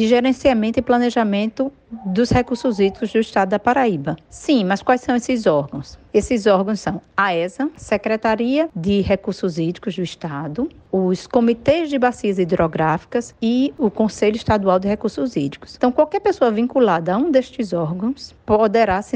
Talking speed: 155 wpm